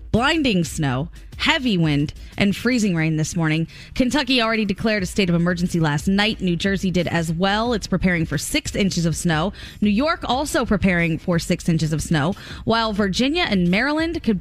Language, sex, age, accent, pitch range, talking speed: English, female, 20-39, American, 180-255 Hz, 185 wpm